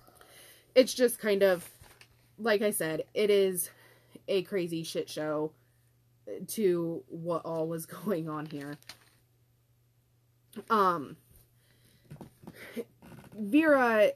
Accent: American